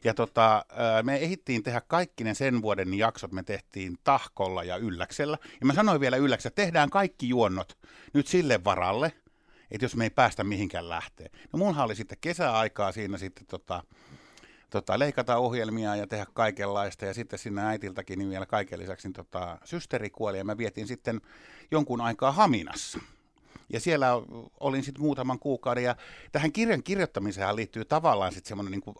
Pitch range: 100-140 Hz